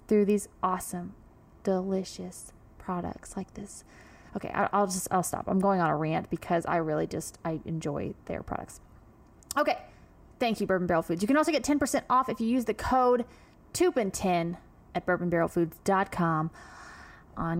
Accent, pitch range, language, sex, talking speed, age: American, 185-250 Hz, English, female, 160 wpm, 20-39